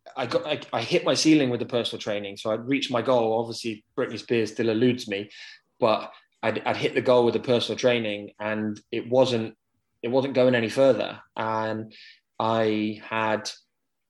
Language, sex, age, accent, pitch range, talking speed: English, male, 20-39, British, 105-120 Hz, 185 wpm